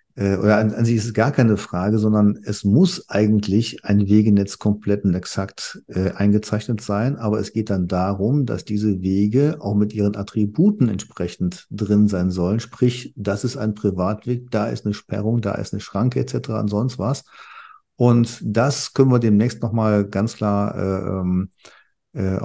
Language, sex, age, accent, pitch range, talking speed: German, male, 50-69, German, 100-125 Hz, 175 wpm